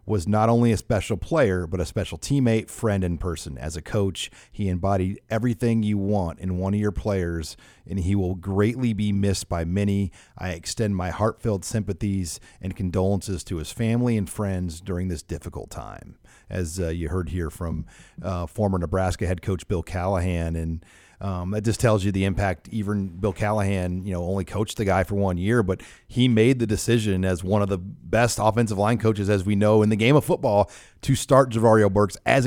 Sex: male